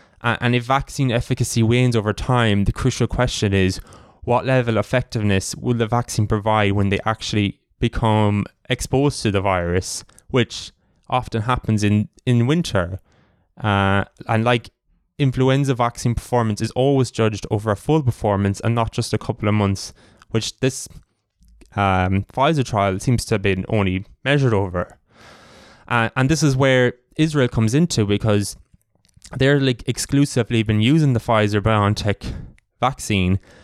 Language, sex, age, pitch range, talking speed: English, male, 20-39, 100-125 Hz, 150 wpm